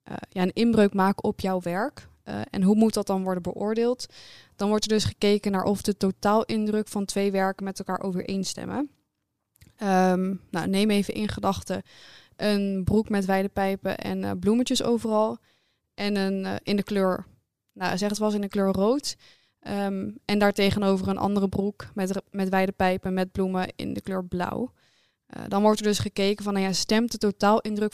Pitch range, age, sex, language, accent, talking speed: 195-215 Hz, 20-39, female, Dutch, Dutch, 185 wpm